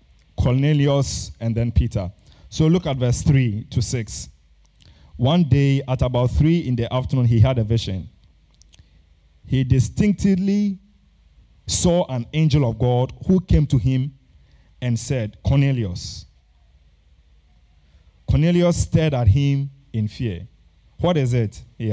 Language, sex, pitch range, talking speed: English, male, 85-135 Hz, 130 wpm